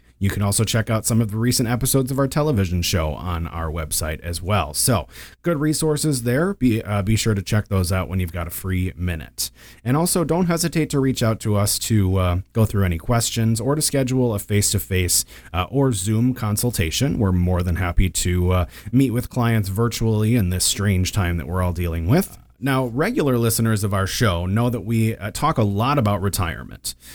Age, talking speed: 30-49, 210 wpm